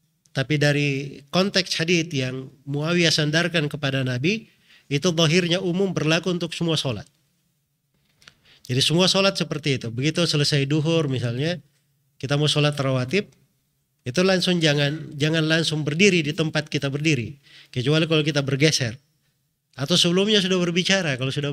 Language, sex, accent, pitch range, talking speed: Indonesian, male, native, 140-175 Hz, 135 wpm